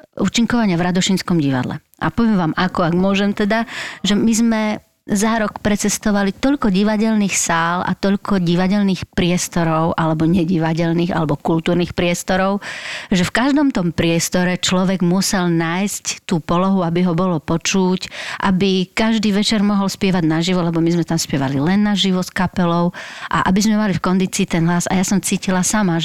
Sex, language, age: female, Slovak, 40-59